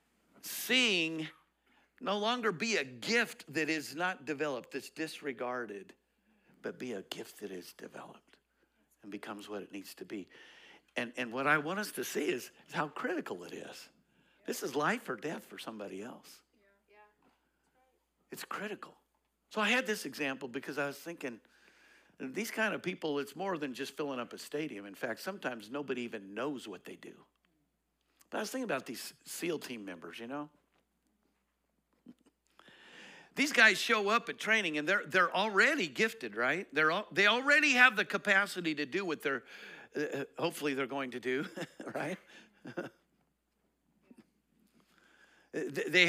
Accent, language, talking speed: American, English, 160 wpm